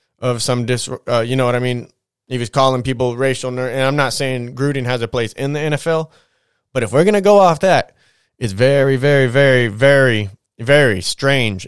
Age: 20-39